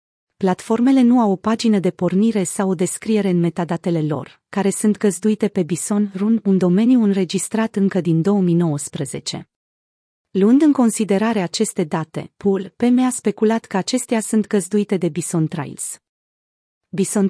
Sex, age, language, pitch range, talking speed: female, 30-49, Romanian, 180-225 Hz, 145 wpm